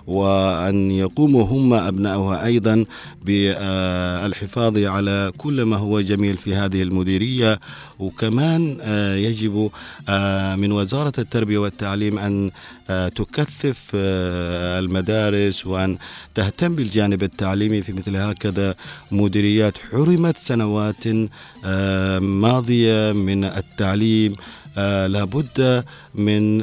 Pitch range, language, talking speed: 100-115 Hz, Arabic, 90 wpm